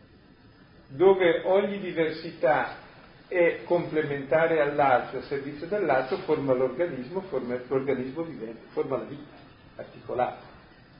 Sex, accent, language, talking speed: male, native, Italian, 100 wpm